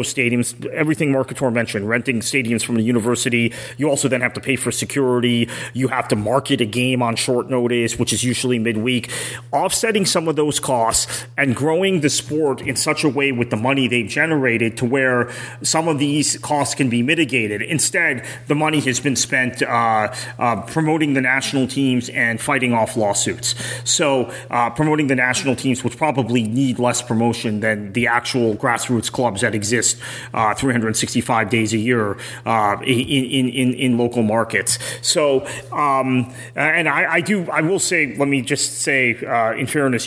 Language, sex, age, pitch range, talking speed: English, male, 30-49, 115-140 Hz, 180 wpm